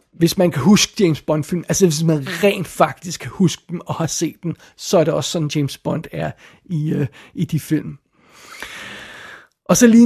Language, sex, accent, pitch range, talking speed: Danish, male, native, 160-185 Hz, 210 wpm